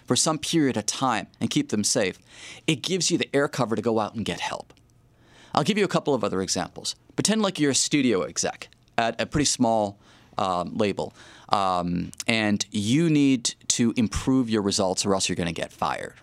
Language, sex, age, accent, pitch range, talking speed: English, male, 30-49, American, 100-140 Hz, 205 wpm